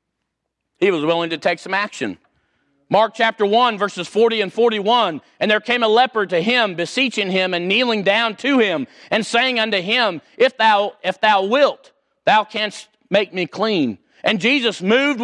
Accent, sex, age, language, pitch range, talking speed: American, male, 40-59, English, 205-245 Hz, 175 wpm